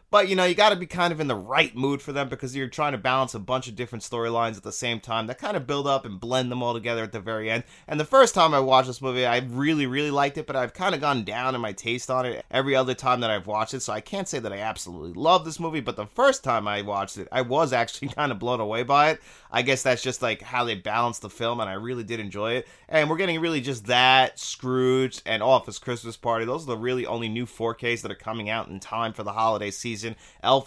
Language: English